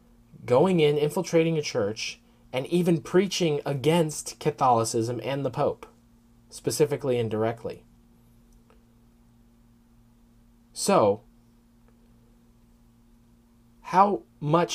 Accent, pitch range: American, 115-140 Hz